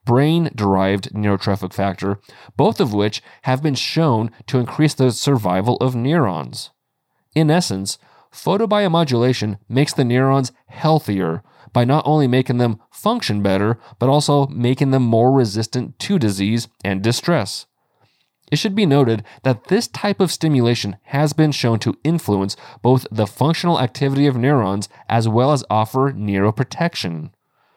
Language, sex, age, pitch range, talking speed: English, male, 30-49, 105-140 Hz, 140 wpm